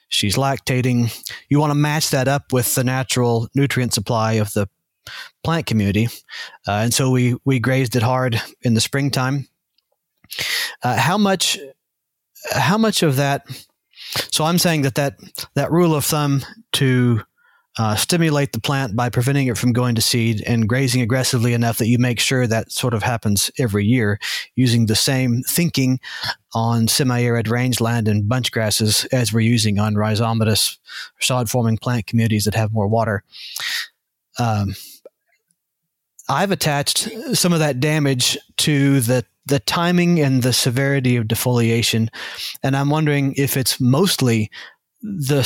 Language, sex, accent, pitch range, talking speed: English, male, American, 115-140 Hz, 150 wpm